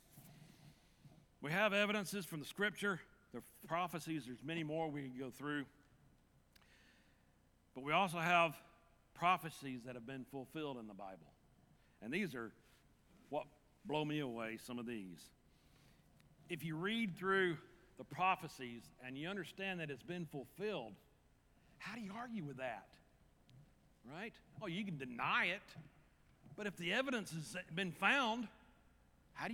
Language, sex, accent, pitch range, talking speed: English, male, American, 135-180 Hz, 145 wpm